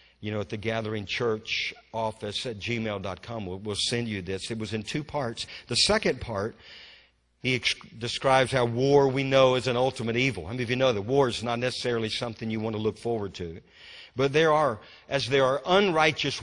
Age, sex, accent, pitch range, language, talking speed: 50-69, male, American, 110-145 Hz, English, 210 wpm